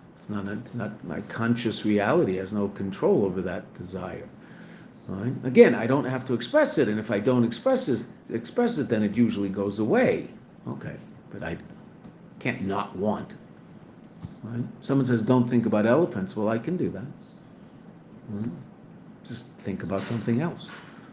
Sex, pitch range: male, 110-135 Hz